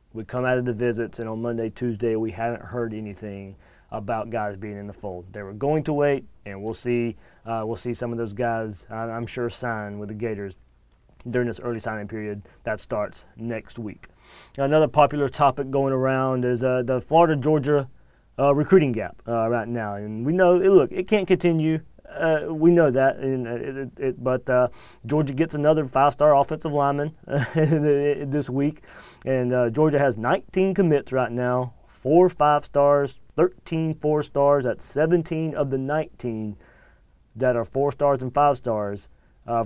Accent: American